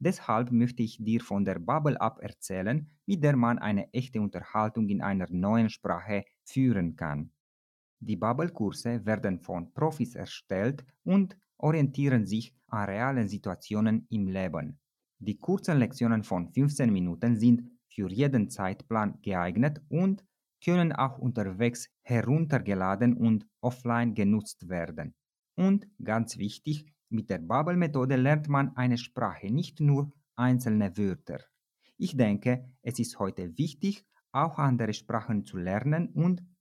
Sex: male